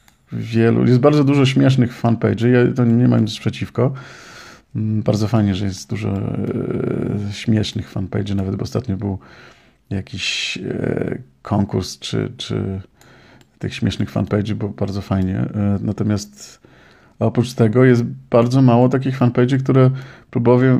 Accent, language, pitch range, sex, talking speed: native, Polish, 100-120 Hz, male, 135 wpm